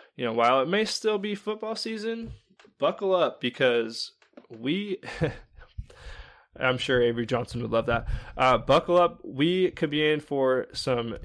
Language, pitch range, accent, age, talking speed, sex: English, 120-150 Hz, American, 20-39, 155 wpm, male